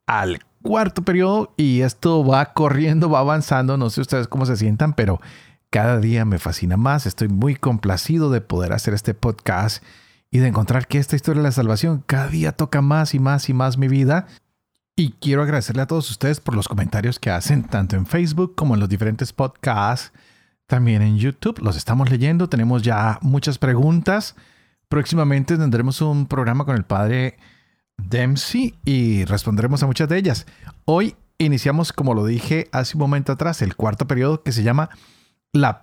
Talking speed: 180 wpm